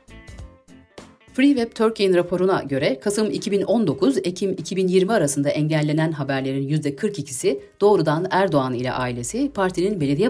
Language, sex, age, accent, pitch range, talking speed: Turkish, female, 40-59, native, 135-200 Hz, 110 wpm